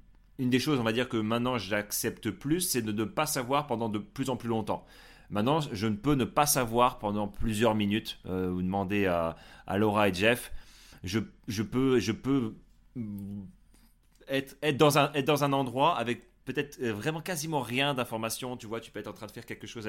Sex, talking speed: male, 210 wpm